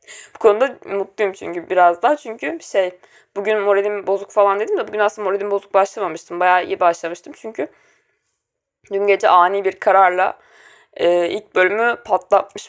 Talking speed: 150 wpm